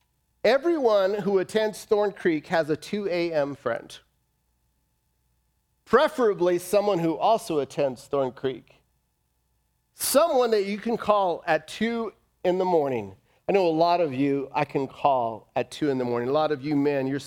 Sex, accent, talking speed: male, American, 165 wpm